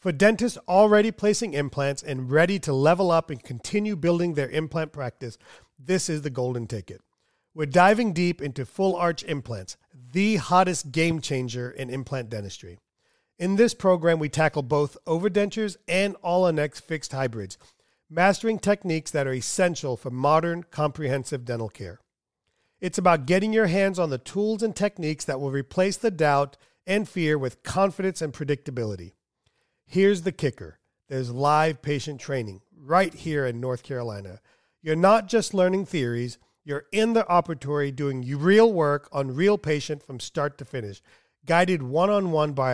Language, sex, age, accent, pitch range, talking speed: English, male, 40-59, American, 130-185 Hz, 155 wpm